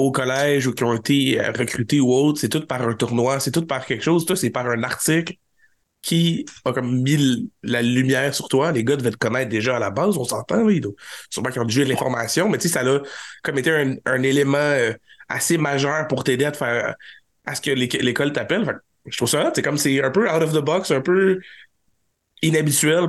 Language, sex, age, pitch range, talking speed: French, male, 30-49, 120-155 Hz, 220 wpm